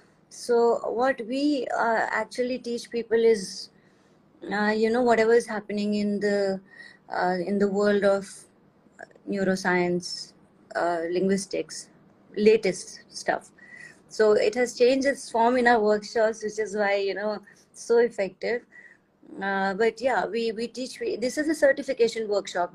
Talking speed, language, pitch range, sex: 145 wpm, English, 195-230 Hz, female